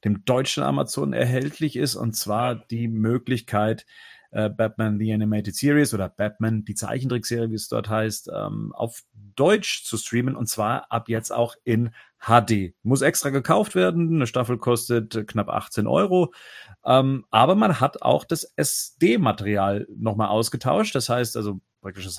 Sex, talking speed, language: male, 145 wpm, German